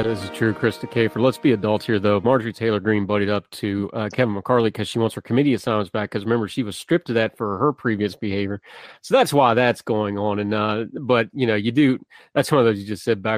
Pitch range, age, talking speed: 105-125 Hz, 30-49, 275 wpm